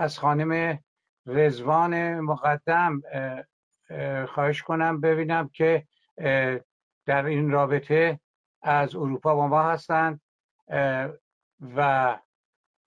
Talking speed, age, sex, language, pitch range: 80 wpm, 60-79, male, Persian, 145-170 Hz